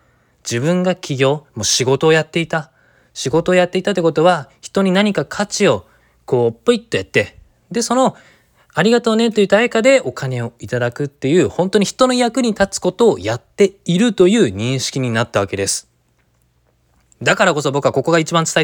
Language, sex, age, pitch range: Japanese, male, 20-39, 120-205 Hz